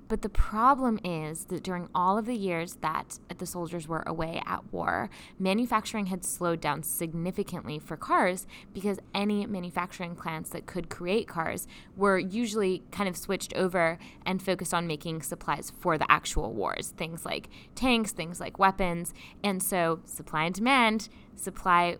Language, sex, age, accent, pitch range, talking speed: English, female, 10-29, American, 170-220 Hz, 160 wpm